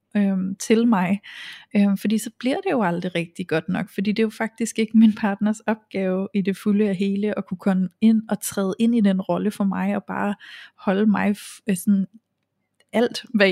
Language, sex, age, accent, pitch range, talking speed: Danish, female, 20-39, native, 195-220 Hz, 210 wpm